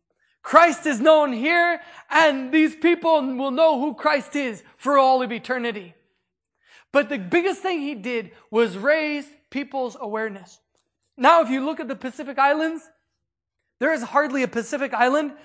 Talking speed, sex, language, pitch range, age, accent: 155 wpm, male, English, 240-310 Hz, 20-39, American